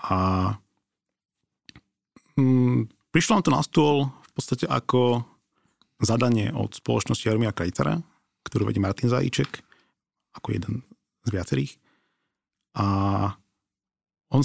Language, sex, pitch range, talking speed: Slovak, male, 100-120 Hz, 100 wpm